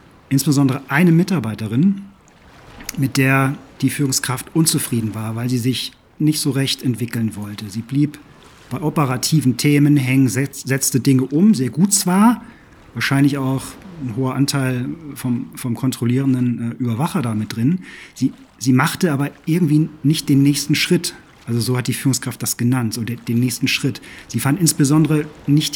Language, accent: German, German